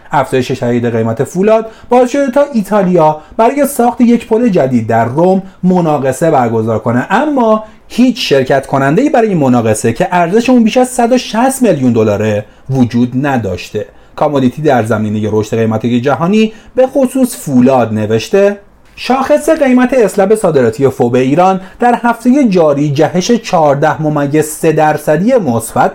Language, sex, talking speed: Persian, male, 135 wpm